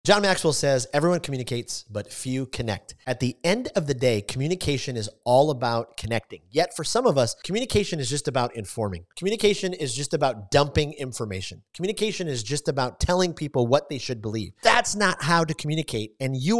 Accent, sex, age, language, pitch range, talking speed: American, male, 30-49, English, 120-175 Hz, 190 wpm